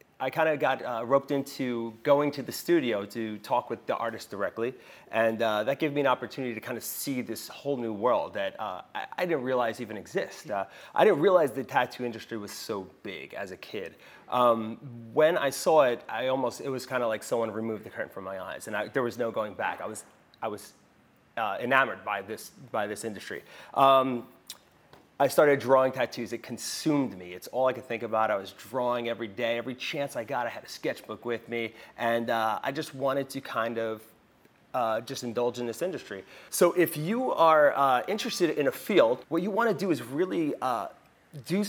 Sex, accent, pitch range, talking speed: male, American, 115-145 Hz, 215 wpm